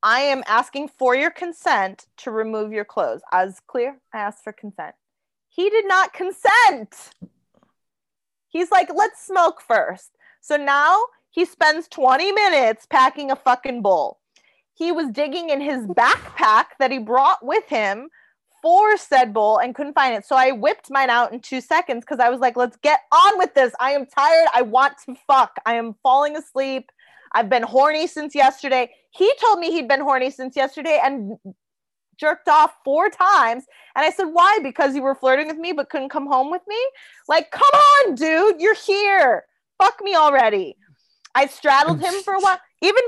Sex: female